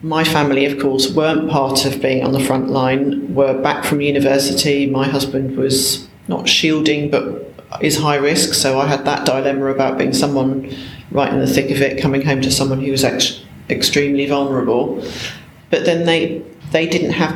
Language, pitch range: English, 135-155 Hz